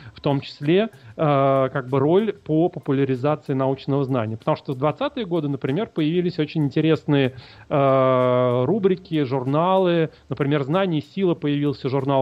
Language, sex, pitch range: Russian, male, 135-165 Hz